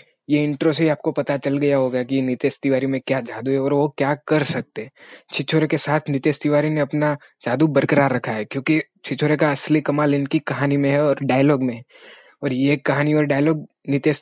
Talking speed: 95 wpm